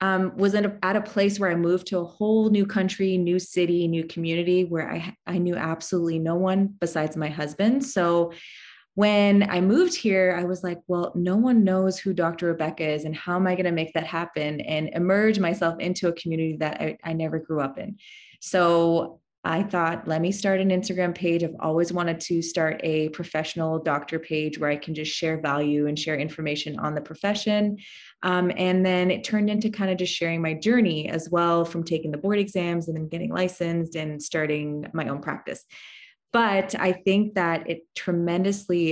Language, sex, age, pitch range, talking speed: English, female, 20-39, 160-190 Hz, 200 wpm